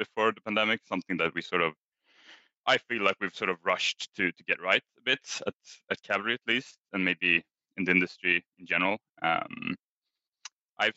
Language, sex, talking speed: English, male, 190 wpm